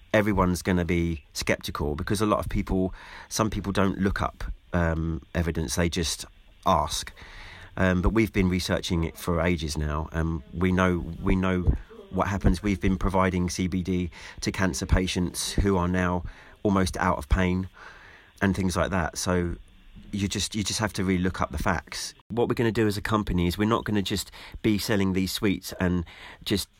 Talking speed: 195 wpm